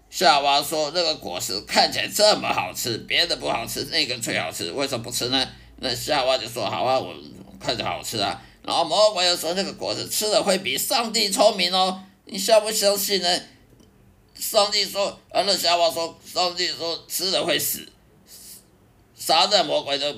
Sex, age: male, 50-69